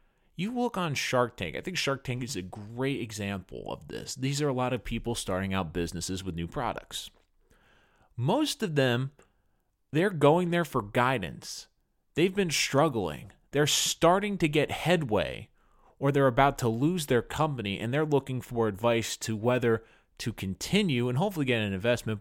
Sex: male